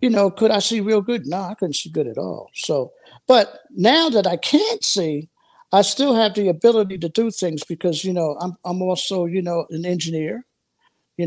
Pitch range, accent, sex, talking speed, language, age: 170-225 Hz, American, male, 215 wpm, English, 50-69